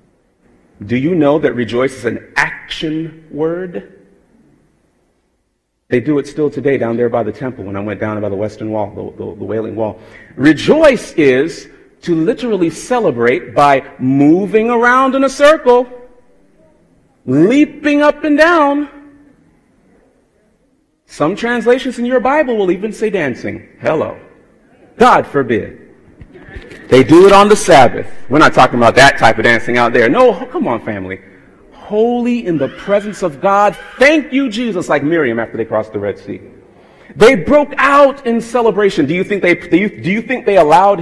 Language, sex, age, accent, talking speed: English, male, 40-59, American, 155 wpm